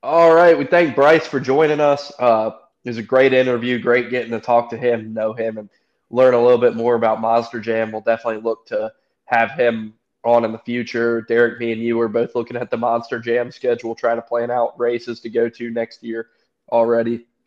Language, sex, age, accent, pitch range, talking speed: English, male, 20-39, American, 115-130 Hz, 220 wpm